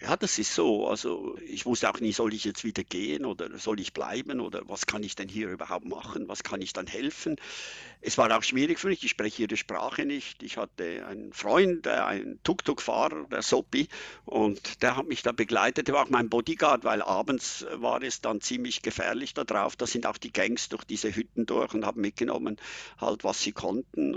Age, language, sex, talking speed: 50-69, German, male, 215 wpm